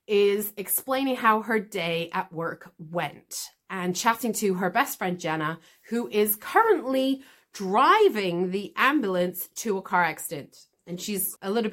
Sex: female